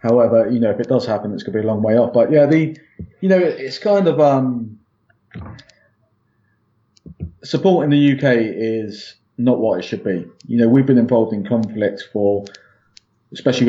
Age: 30-49